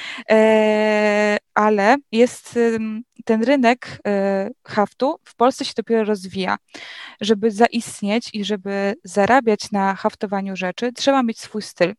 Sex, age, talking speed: female, 20-39, 110 wpm